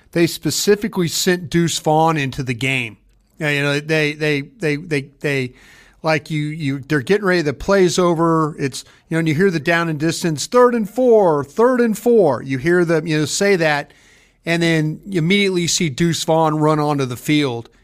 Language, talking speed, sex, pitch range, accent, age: English, 195 wpm, male, 135-165 Hz, American, 40-59